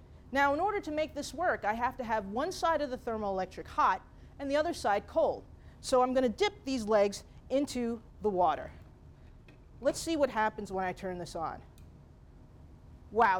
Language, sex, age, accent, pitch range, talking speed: English, female, 30-49, American, 215-300 Hz, 190 wpm